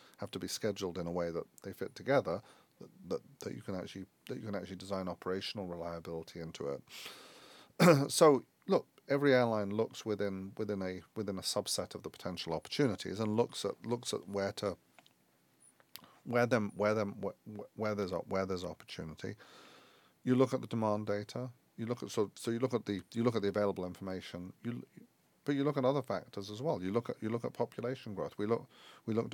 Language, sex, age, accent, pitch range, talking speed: English, male, 40-59, British, 95-115 Hz, 205 wpm